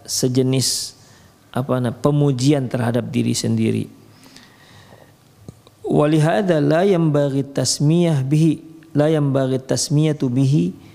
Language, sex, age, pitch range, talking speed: Indonesian, male, 40-59, 120-145 Hz, 95 wpm